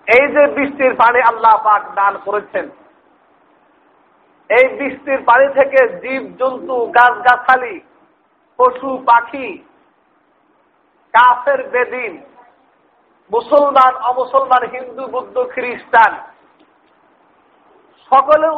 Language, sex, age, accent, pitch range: Bengali, male, 50-69, native, 245-280 Hz